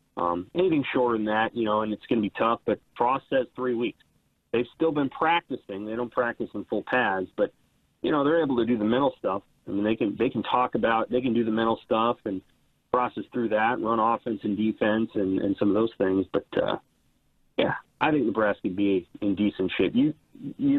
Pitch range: 110-145 Hz